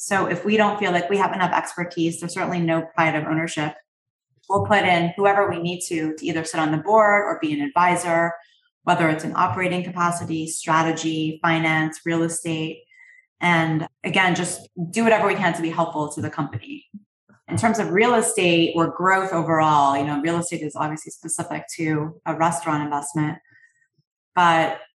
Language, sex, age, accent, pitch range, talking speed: English, female, 20-39, American, 160-190 Hz, 180 wpm